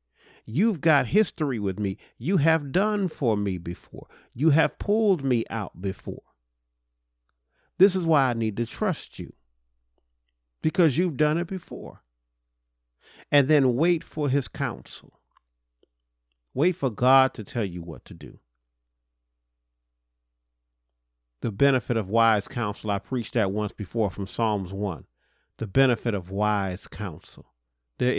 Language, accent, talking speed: English, American, 135 wpm